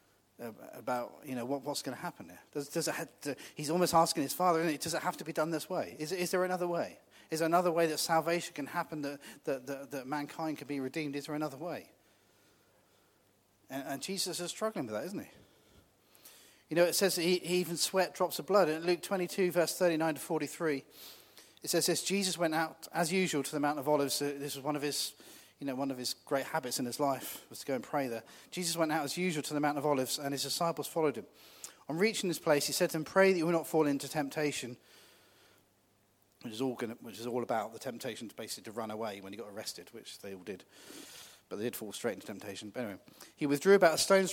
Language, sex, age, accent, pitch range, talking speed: English, male, 40-59, British, 135-170 Hz, 255 wpm